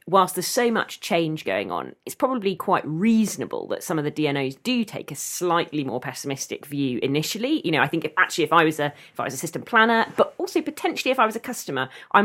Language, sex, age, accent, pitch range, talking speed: English, female, 30-49, British, 155-210 Hz, 240 wpm